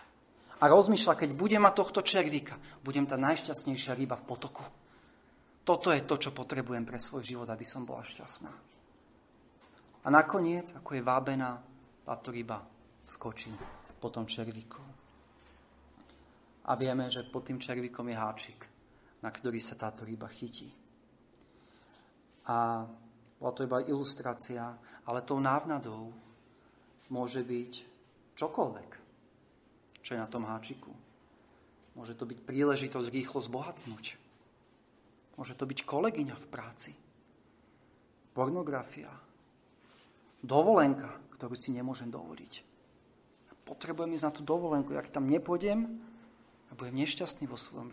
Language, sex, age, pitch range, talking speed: Slovak, male, 40-59, 120-140 Hz, 125 wpm